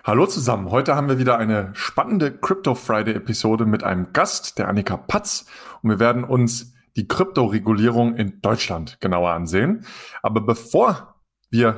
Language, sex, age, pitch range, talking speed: German, male, 30-49, 110-130 Hz, 155 wpm